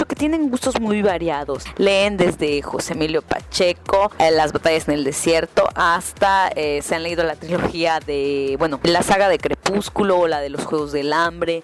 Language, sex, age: Spanish, female, 20-39